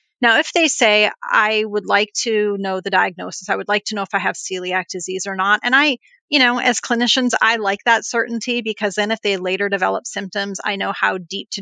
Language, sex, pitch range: English, female, 190-225 Hz